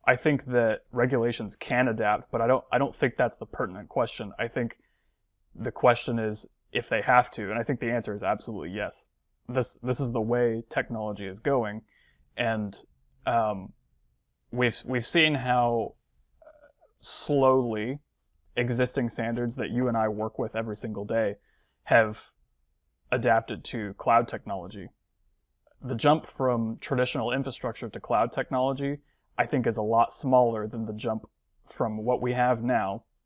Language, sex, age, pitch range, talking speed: English, male, 20-39, 105-125 Hz, 155 wpm